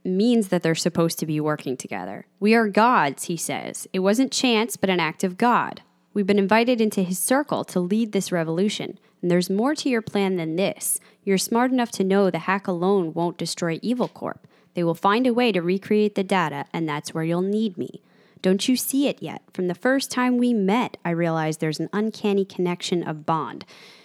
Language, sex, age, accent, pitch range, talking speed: English, female, 10-29, American, 170-230 Hz, 210 wpm